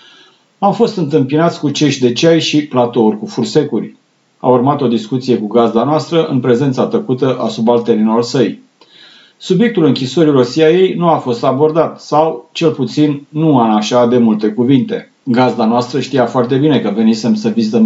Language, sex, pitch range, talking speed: Romanian, male, 120-155 Hz, 170 wpm